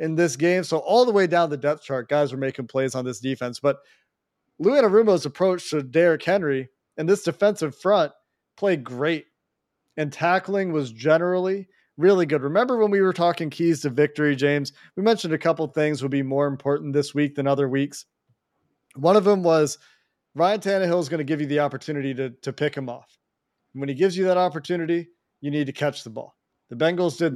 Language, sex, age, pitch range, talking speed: English, male, 40-59, 145-185 Hz, 205 wpm